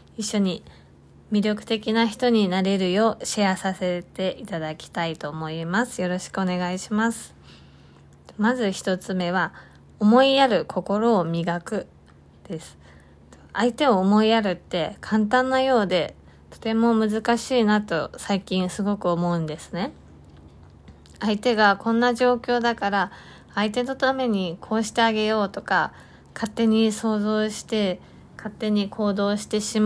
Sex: female